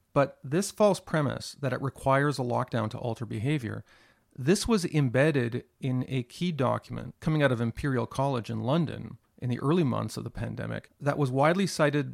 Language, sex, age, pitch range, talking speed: English, male, 40-59, 120-145 Hz, 185 wpm